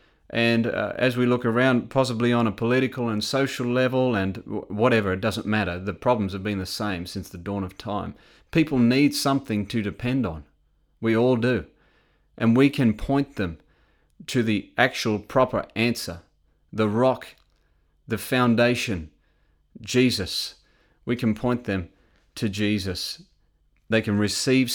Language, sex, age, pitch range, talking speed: English, male, 30-49, 105-130 Hz, 155 wpm